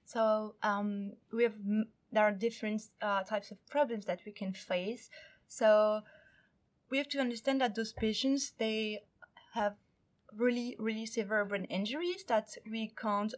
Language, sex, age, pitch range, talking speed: English, female, 20-39, 215-265 Hz, 150 wpm